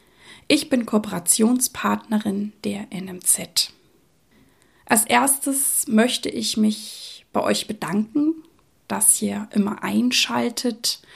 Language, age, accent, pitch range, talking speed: German, 20-39, German, 210-240 Hz, 90 wpm